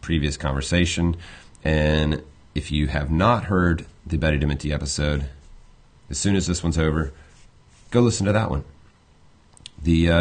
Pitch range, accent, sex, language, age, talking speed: 75-90 Hz, American, male, English, 30-49, 145 wpm